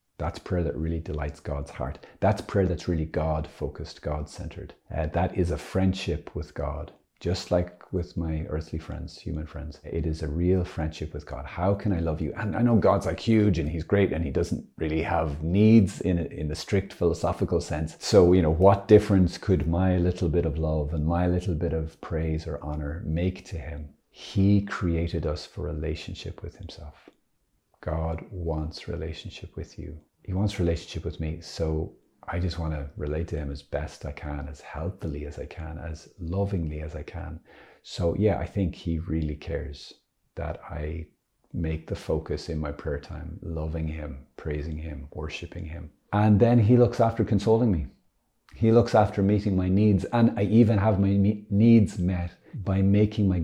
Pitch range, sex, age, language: 80-95 Hz, male, 40-59, English